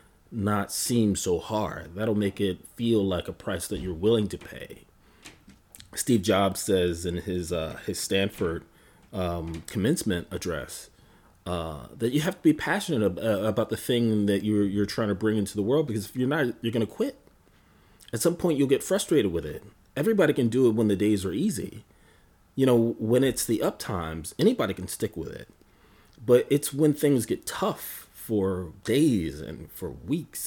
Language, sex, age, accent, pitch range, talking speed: English, male, 30-49, American, 95-125 Hz, 185 wpm